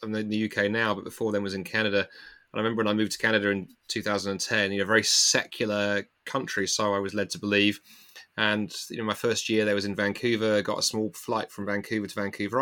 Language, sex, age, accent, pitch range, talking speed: English, male, 30-49, British, 105-135 Hz, 240 wpm